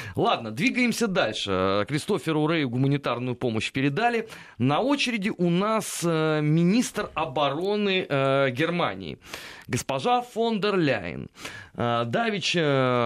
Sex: male